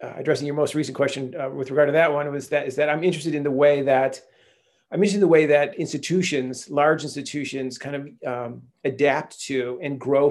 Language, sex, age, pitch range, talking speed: English, male, 40-59, 125-145 Hz, 215 wpm